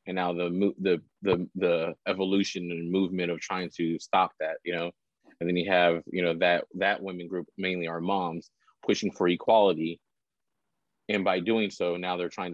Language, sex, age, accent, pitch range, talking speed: English, male, 30-49, American, 90-100 Hz, 185 wpm